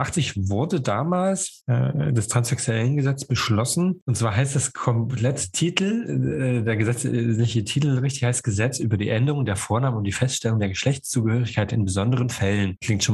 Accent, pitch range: German, 105-130 Hz